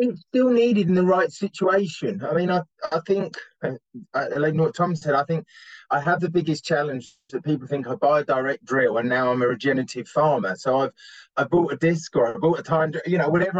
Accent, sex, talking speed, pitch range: British, male, 220 wpm, 140-170 Hz